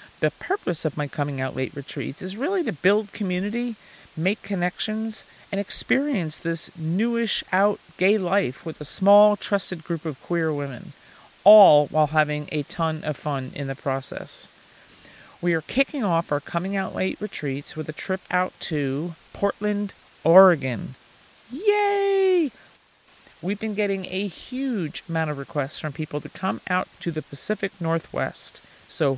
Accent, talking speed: American, 150 wpm